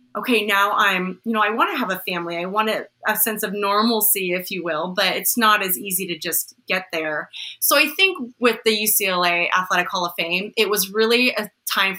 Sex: female